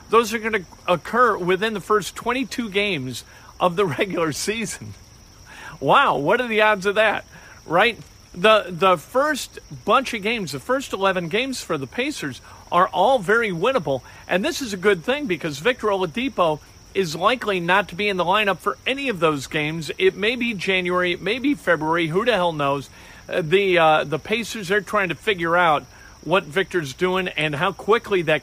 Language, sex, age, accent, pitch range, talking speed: English, male, 50-69, American, 150-205 Hz, 190 wpm